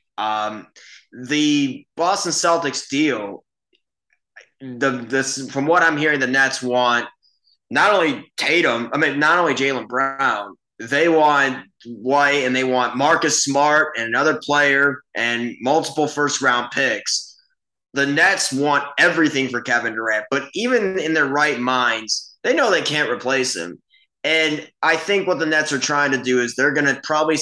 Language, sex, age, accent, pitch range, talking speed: English, male, 20-39, American, 125-155 Hz, 160 wpm